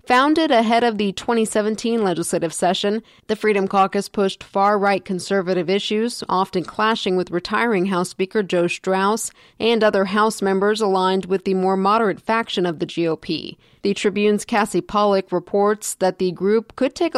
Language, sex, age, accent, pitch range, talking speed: English, female, 40-59, American, 185-210 Hz, 155 wpm